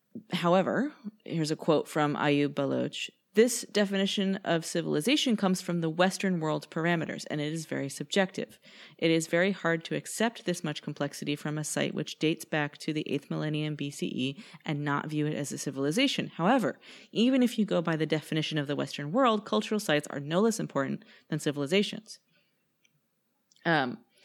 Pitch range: 150-195 Hz